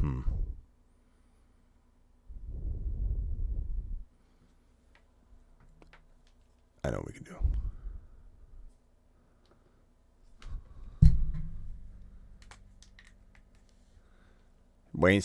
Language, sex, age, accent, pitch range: English, male, 40-59, American, 80-95 Hz